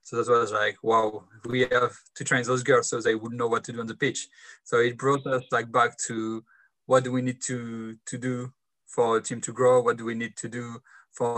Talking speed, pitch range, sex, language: 250 wpm, 115-135 Hz, male, English